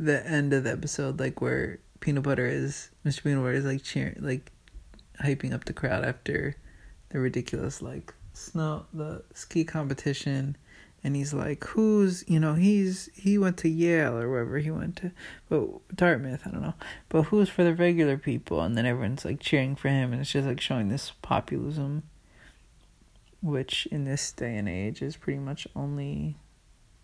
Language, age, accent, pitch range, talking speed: English, 20-39, American, 125-165 Hz, 180 wpm